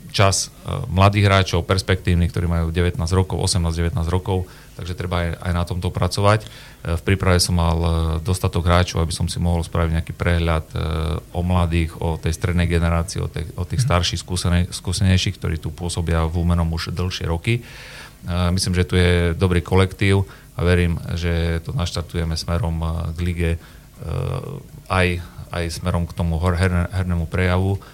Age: 30-49